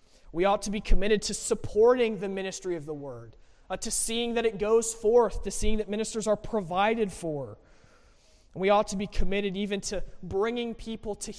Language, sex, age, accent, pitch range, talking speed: English, male, 20-39, American, 165-200 Hz, 190 wpm